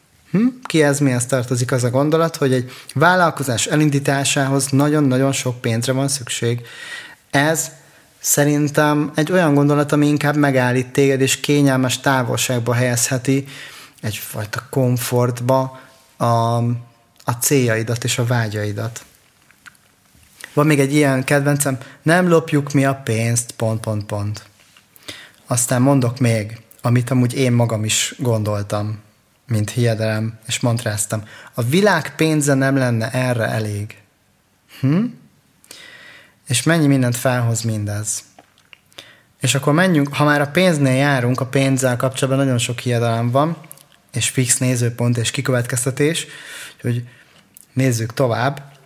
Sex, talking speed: male, 125 wpm